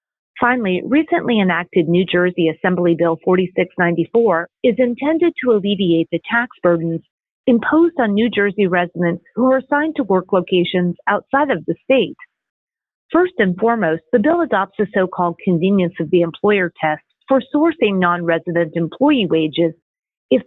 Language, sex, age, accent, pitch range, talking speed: English, female, 40-59, American, 175-260 Hz, 150 wpm